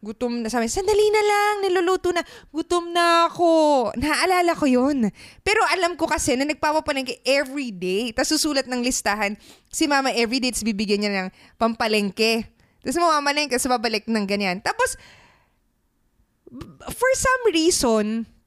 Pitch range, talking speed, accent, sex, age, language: 225-335 Hz, 140 wpm, native, female, 20-39, Filipino